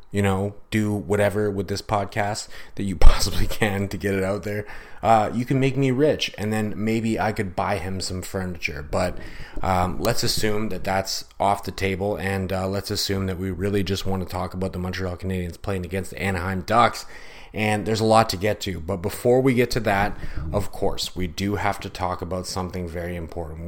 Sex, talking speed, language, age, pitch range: male, 215 wpm, English, 30-49, 90-105 Hz